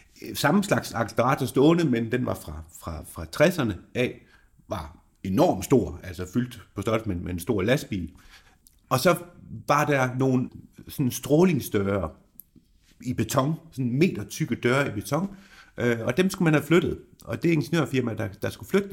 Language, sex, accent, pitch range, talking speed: Danish, male, native, 95-135 Hz, 160 wpm